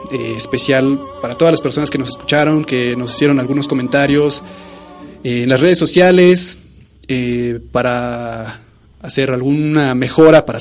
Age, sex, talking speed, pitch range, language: 30-49, male, 140 wpm, 125-165 Hz, Spanish